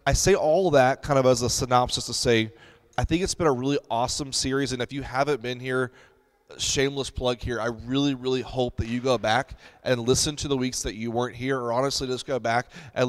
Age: 30-49